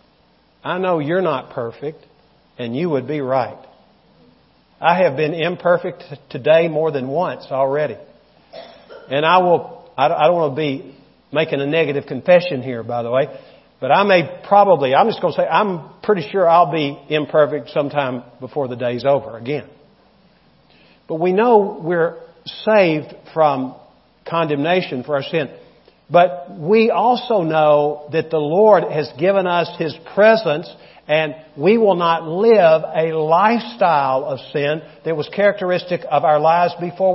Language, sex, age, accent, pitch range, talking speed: English, male, 50-69, American, 145-185 Hz, 150 wpm